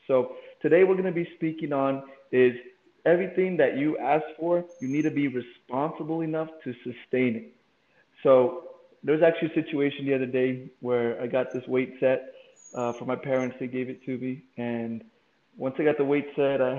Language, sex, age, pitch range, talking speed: English, male, 20-39, 125-155 Hz, 195 wpm